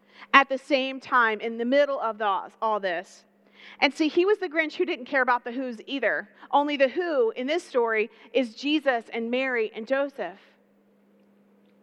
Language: English